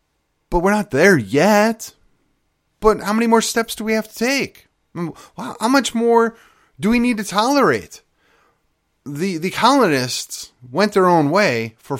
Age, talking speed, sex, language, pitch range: 30-49, 155 wpm, male, English, 105-165 Hz